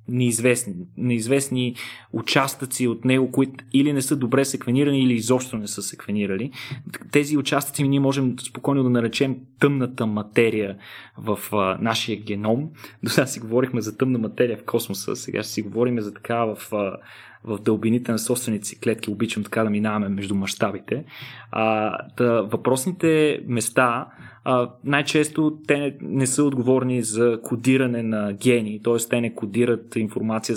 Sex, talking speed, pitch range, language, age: male, 150 wpm, 110-135 Hz, Bulgarian, 20-39